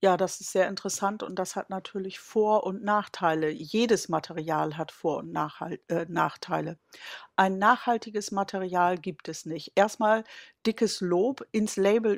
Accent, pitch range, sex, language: German, 175-215 Hz, female, German